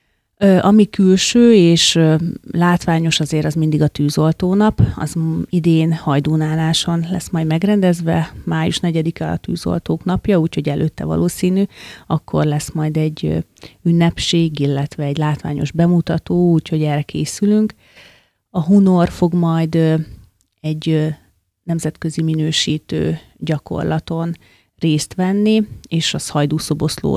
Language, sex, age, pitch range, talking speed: Hungarian, female, 30-49, 155-175 Hz, 105 wpm